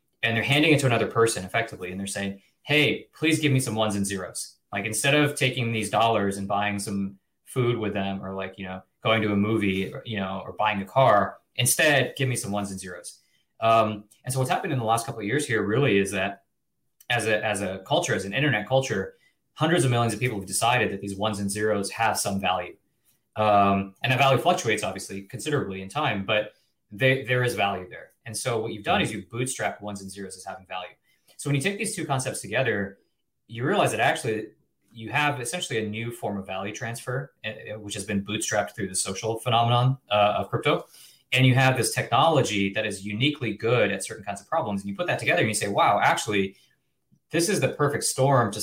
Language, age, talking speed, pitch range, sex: English, 20-39, 225 wpm, 100-130 Hz, male